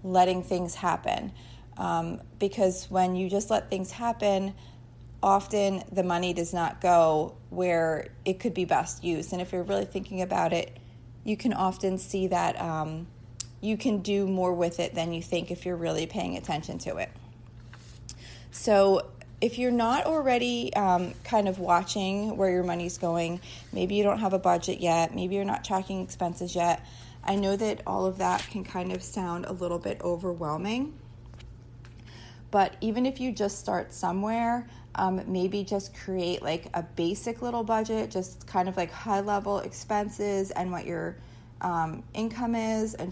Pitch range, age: 170-200 Hz, 30-49